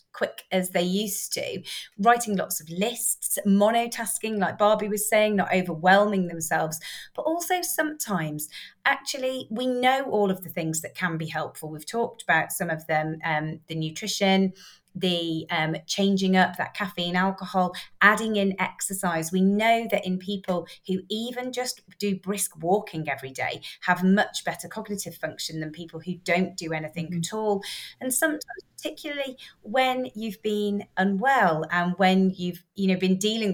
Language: English